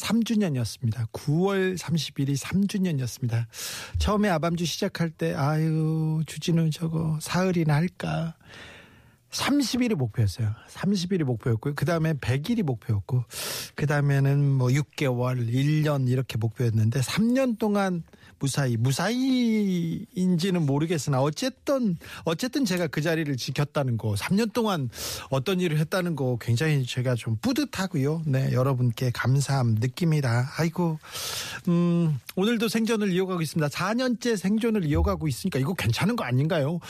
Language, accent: Korean, native